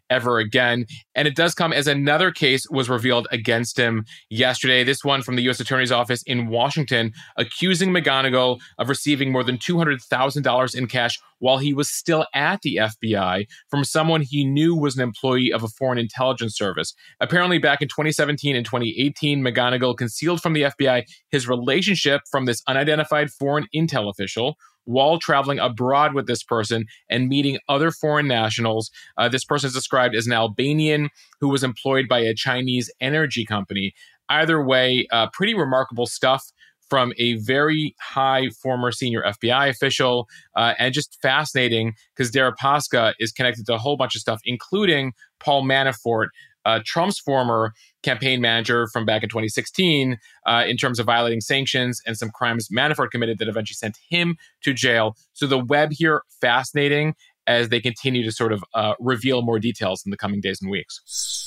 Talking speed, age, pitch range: 170 wpm, 30-49, 115-145 Hz